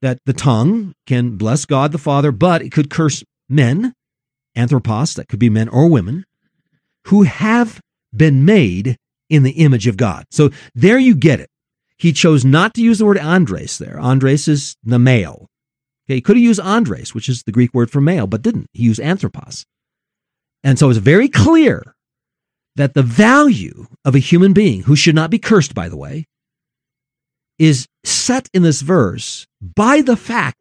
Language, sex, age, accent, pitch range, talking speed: English, male, 50-69, American, 130-185 Hz, 180 wpm